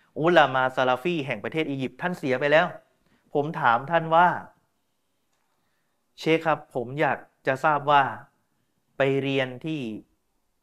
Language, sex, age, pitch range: Thai, male, 30-49, 120-155 Hz